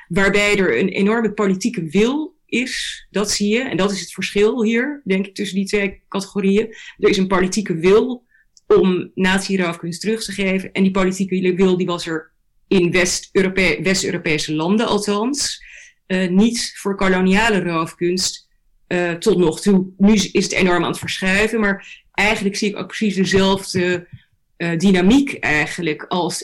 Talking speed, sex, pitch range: 160 wpm, female, 175-205 Hz